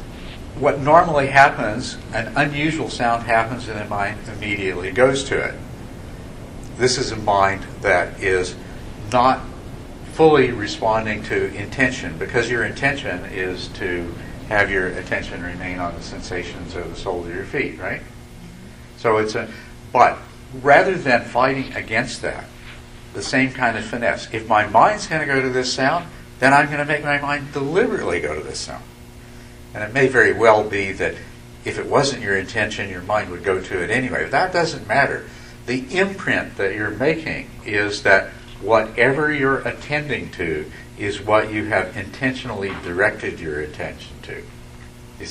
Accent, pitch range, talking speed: American, 90-130 Hz, 160 wpm